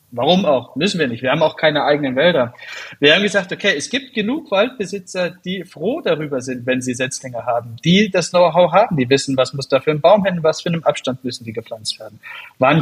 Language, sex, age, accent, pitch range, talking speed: German, male, 30-49, German, 135-180 Hz, 230 wpm